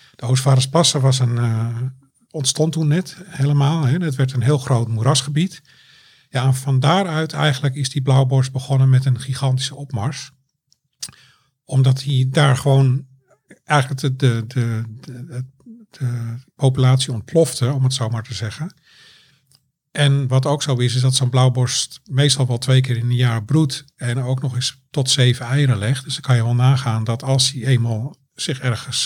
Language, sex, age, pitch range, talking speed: Dutch, male, 50-69, 125-140 Hz, 175 wpm